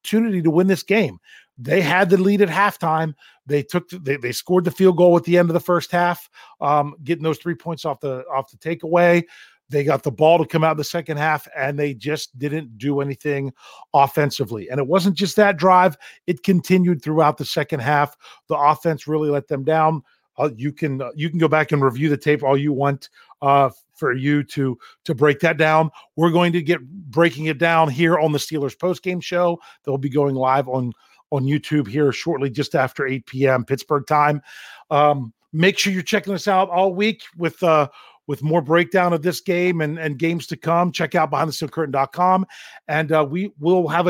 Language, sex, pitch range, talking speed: English, male, 145-175 Hz, 210 wpm